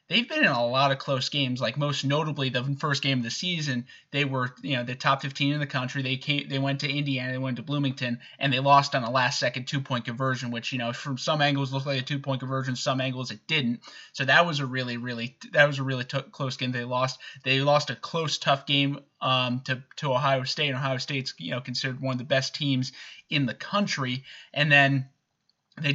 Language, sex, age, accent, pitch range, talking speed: English, male, 20-39, American, 130-145 Hz, 240 wpm